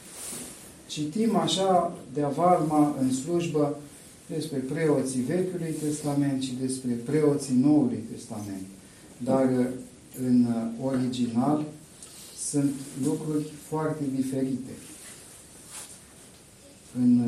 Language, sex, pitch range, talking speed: Romanian, male, 125-150 Hz, 80 wpm